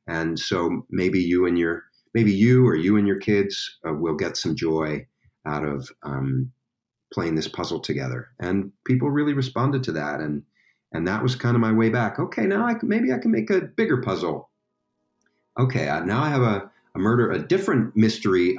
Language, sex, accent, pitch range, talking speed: English, male, American, 75-120 Hz, 200 wpm